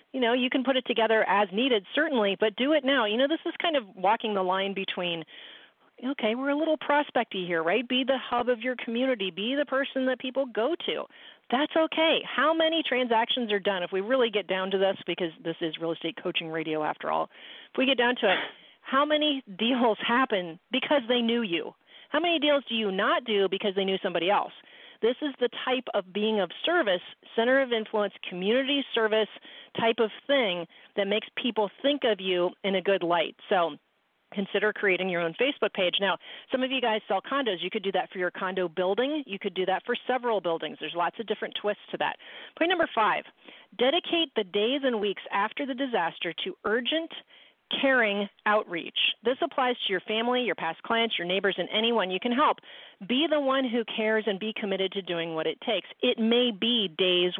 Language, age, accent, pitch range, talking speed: English, 40-59, American, 190-260 Hz, 210 wpm